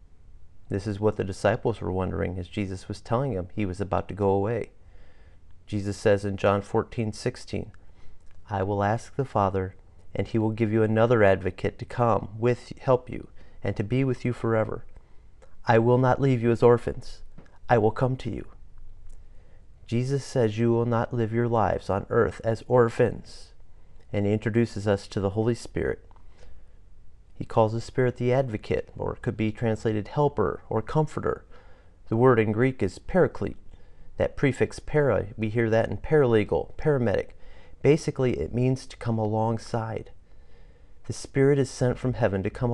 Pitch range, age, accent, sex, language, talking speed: 95-120 Hz, 40-59, American, male, English, 170 wpm